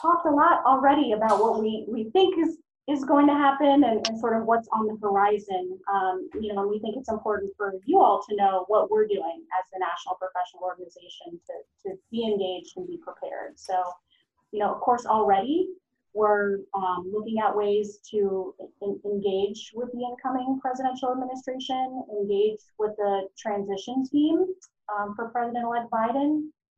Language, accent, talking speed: English, American, 175 wpm